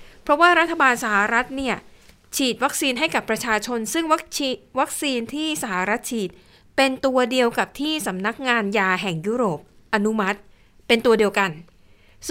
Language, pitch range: Thai, 200-250 Hz